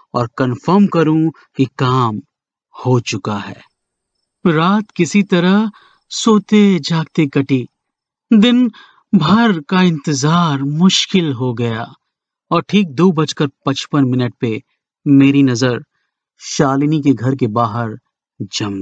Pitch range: 130-200 Hz